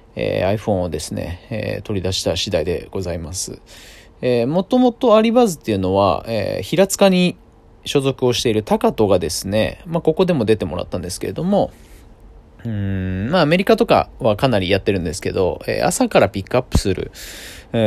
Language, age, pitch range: Japanese, 20-39, 95-155 Hz